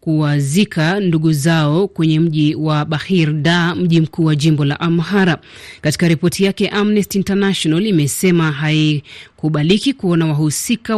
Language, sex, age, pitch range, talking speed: Swahili, female, 30-49, 155-185 Hz, 125 wpm